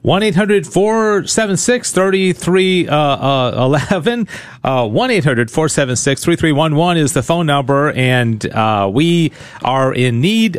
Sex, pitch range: male, 120-160 Hz